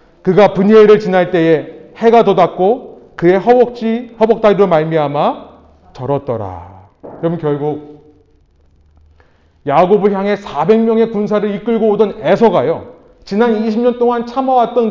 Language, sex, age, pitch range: Korean, male, 30-49, 145-235 Hz